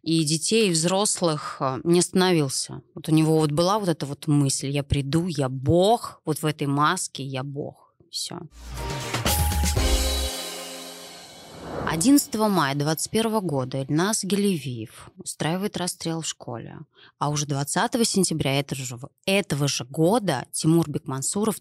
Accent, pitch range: native, 140-190 Hz